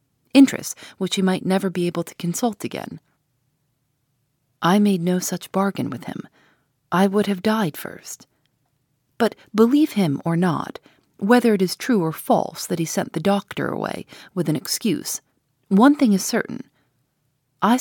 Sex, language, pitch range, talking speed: female, English, 145-205 Hz, 160 wpm